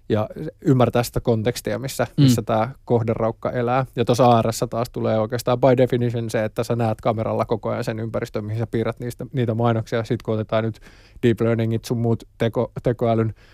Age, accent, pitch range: 20-39, native, 110-125 Hz